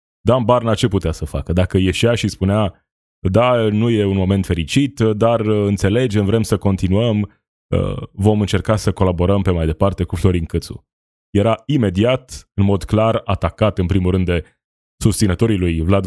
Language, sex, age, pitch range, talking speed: Romanian, male, 20-39, 90-110 Hz, 170 wpm